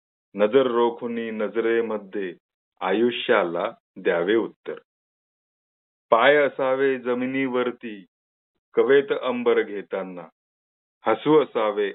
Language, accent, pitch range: Marathi, native, 110-165 Hz